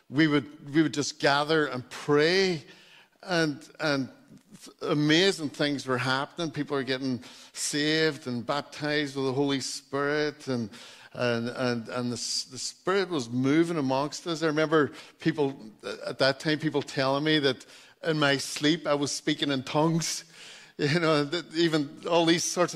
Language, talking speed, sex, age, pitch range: English, 160 wpm, male, 50-69, 130-165 Hz